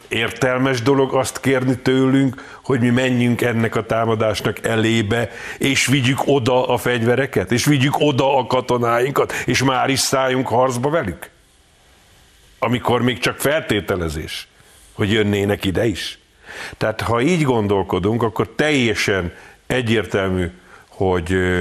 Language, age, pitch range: Hungarian, 50-69, 110-130 Hz